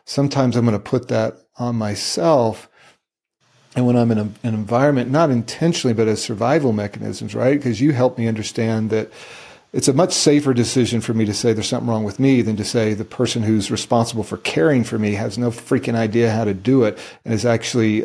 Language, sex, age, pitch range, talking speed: English, male, 40-59, 110-125 Hz, 210 wpm